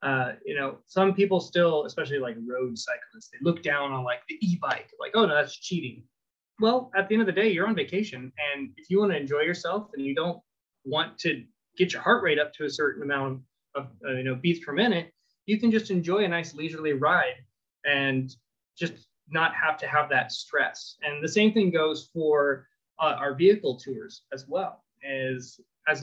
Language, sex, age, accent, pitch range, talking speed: English, male, 20-39, American, 135-185 Hz, 205 wpm